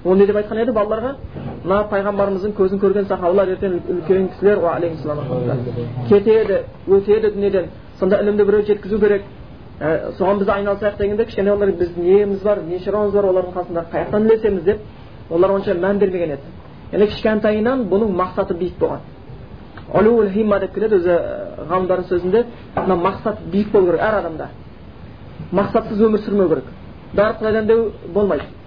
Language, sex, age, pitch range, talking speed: Bulgarian, male, 30-49, 190-210 Hz, 90 wpm